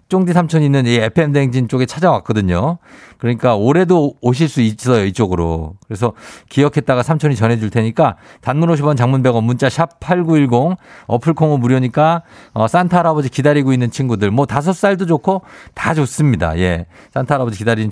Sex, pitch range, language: male, 110-145 Hz, Korean